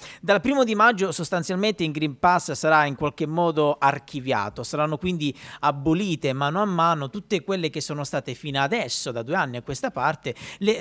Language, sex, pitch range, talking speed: Italian, male, 135-180 Hz, 185 wpm